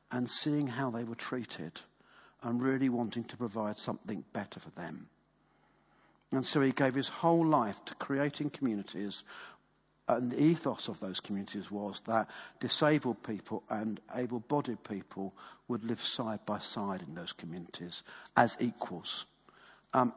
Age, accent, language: 50-69, British, English